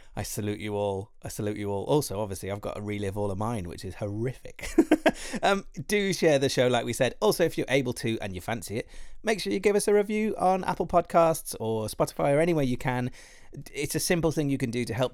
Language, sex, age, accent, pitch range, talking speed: English, male, 30-49, British, 110-165 Hz, 245 wpm